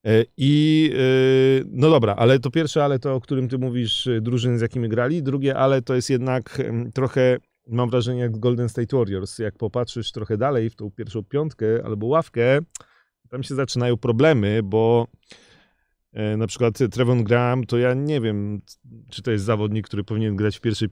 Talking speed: 170 wpm